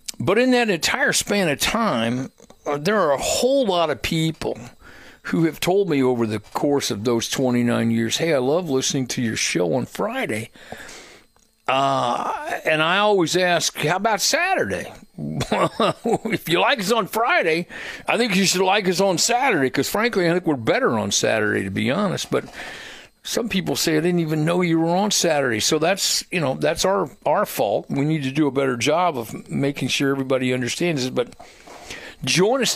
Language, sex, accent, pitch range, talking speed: English, male, American, 130-185 Hz, 190 wpm